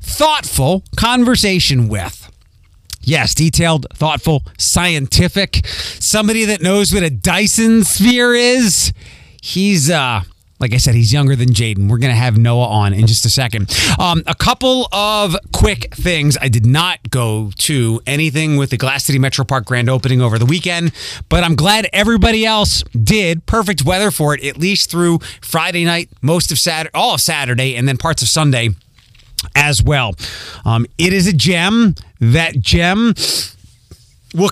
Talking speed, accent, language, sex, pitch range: 160 wpm, American, English, male, 120-175 Hz